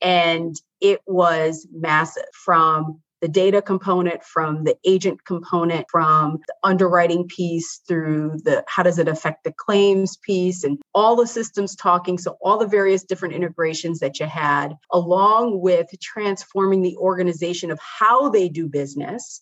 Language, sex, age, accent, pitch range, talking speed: English, female, 30-49, American, 165-200 Hz, 150 wpm